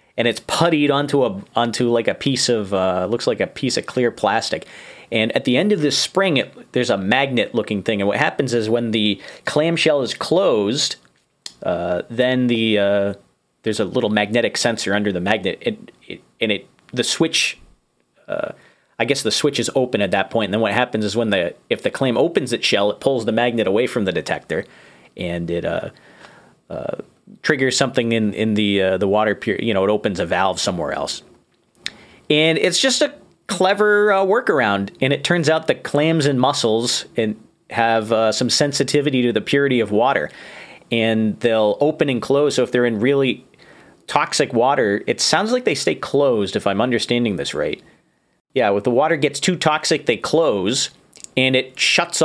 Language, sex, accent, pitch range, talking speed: English, male, American, 110-145 Hz, 195 wpm